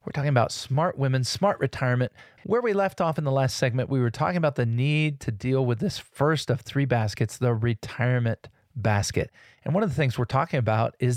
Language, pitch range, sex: English, 120-155 Hz, male